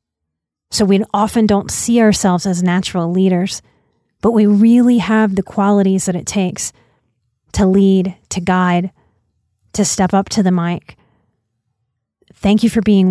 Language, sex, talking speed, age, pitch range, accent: English, female, 145 wpm, 30-49, 180-210 Hz, American